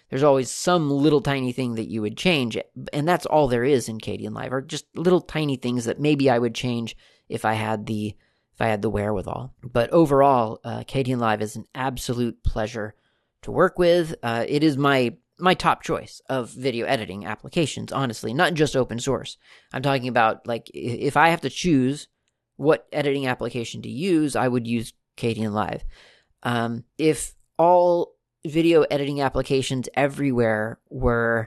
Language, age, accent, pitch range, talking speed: English, 30-49, American, 115-140 Hz, 175 wpm